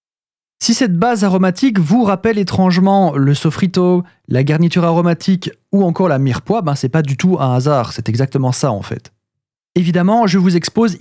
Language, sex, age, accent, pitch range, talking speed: French, male, 30-49, French, 140-200 Hz, 175 wpm